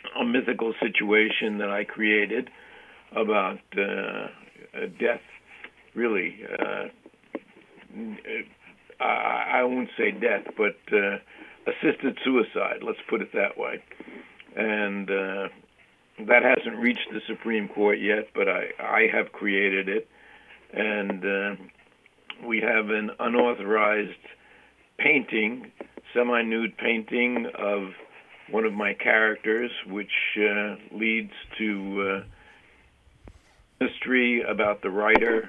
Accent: American